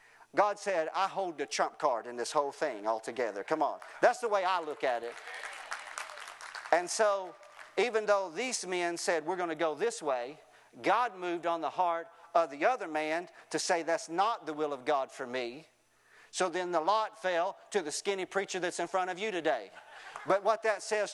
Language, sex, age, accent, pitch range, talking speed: English, male, 40-59, American, 180-235 Hz, 205 wpm